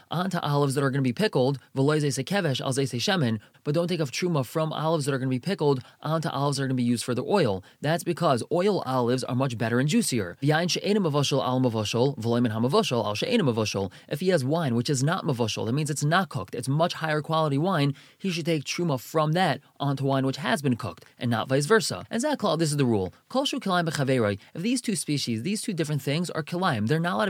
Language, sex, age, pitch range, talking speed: English, male, 20-39, 130-165 Hz, 210 wpm